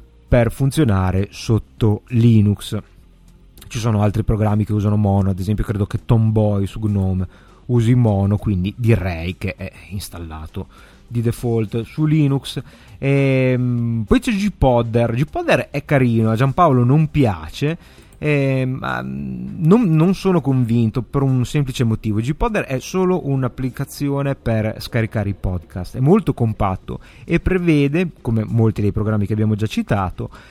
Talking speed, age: 140 wpm, 30-49